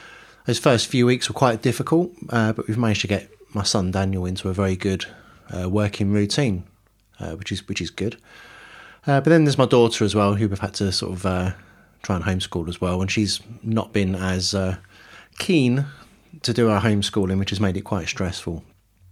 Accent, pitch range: British, 95-115 Hz